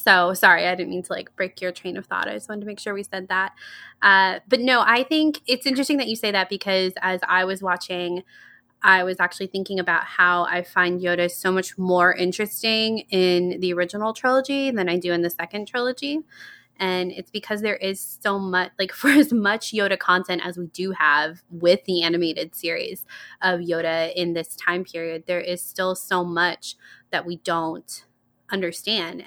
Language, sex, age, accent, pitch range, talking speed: English, female, 20-39, American, 175-200 Hz, 200 wpm